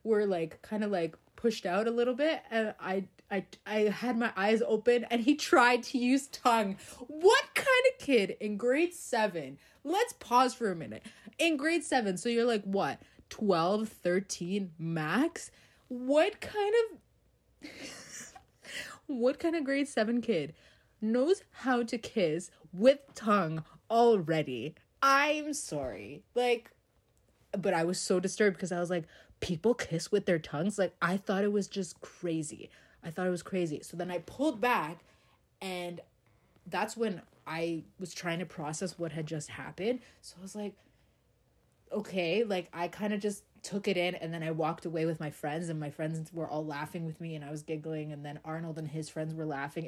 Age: 20-39